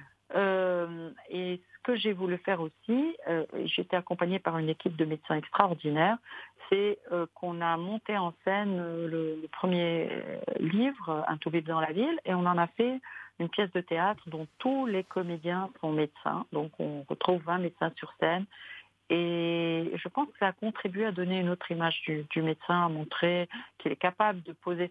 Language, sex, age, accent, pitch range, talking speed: English, female, 50-69, French, 165-200 Hz, 195 wpm